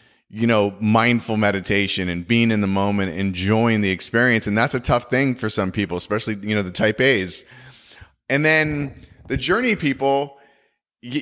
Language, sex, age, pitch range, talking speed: English, male, 30-49, 100-135 Hz, 170 wpm